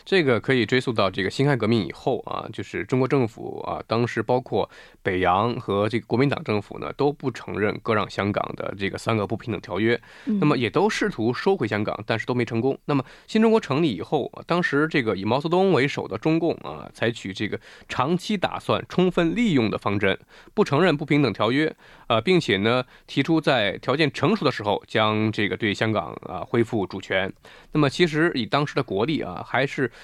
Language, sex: Korean, male